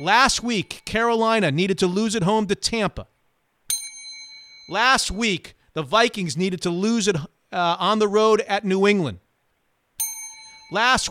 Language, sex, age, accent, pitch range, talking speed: English, male, 40-59, American, 170-235 Hz, 140 wpm